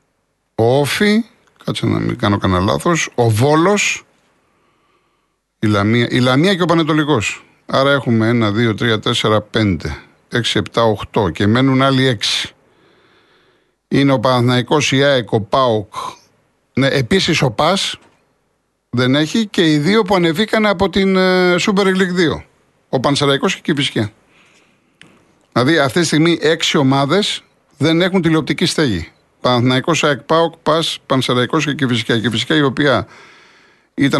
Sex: male